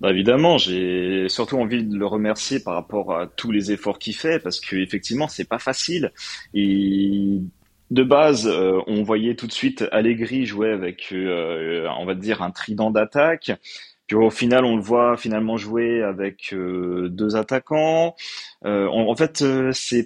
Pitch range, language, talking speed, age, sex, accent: 100-130 Hz, French, 155 wpm, 30-49, male, French